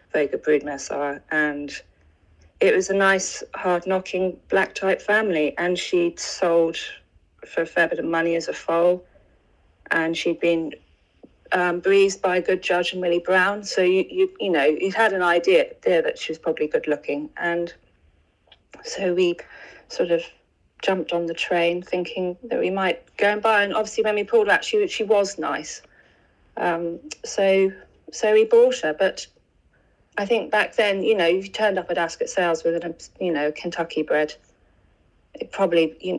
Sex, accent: female, British